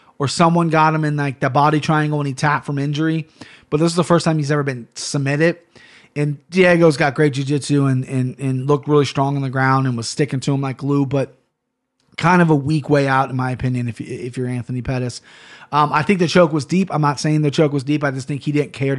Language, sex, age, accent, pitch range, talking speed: English, male, 30-49, American, 130-155 Hz, 255 wpm